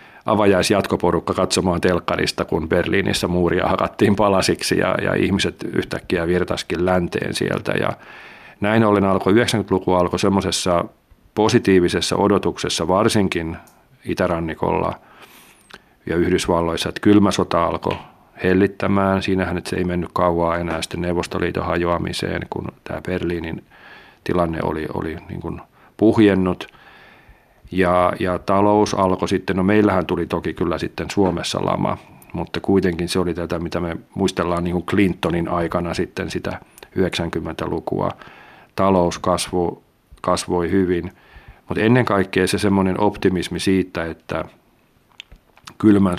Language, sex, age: Finnish, male, 40-59